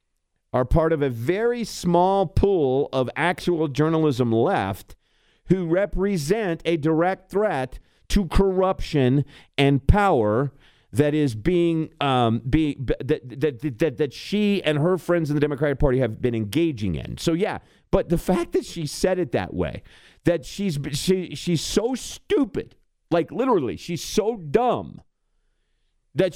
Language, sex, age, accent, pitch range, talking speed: English, male, 50-69, American, 115-175 Hz, 145 wpm